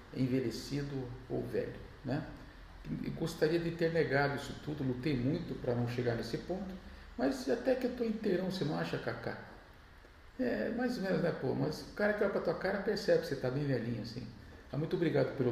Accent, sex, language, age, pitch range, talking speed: Brazilian, male, Portuguese, 50-69, 120-170 Hz, 205 wpm